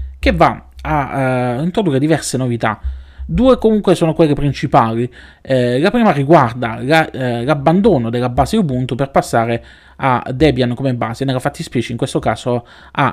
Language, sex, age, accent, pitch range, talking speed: Italian, male, 20-39, native, 120-150 Hz, 145 wpm